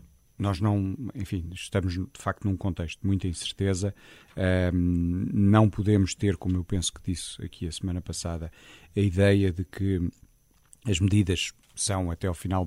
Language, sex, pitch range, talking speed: Portuguese, male, 90-105 Hz, 155 wpm